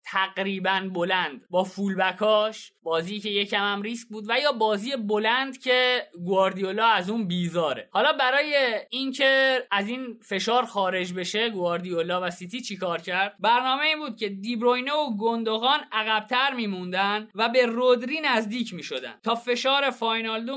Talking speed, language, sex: 145 wpm, Persian, male